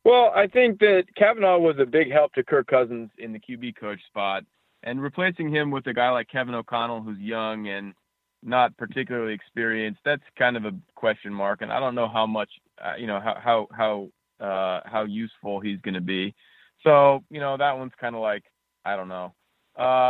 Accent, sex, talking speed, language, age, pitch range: American, male, 205 wpm, English, 30-49, 105-140 Hz